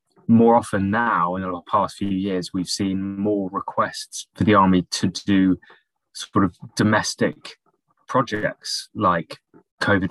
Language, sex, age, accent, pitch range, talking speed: English, male, 20-39, British, 95-110 Hz, 140 wpm